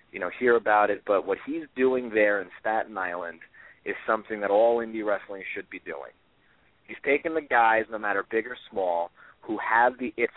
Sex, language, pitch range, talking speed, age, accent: male, English, 105-130 Hz, 205 wpm, 30-49, American